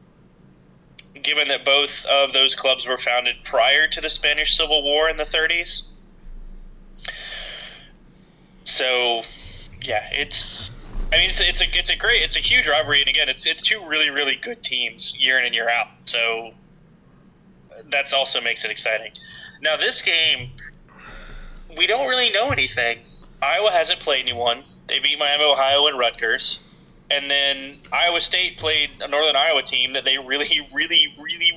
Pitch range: 135-165 Hz